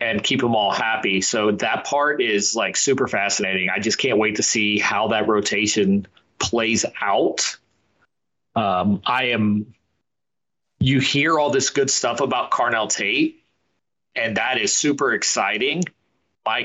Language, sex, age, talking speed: English, male, 30-49, 150 wpm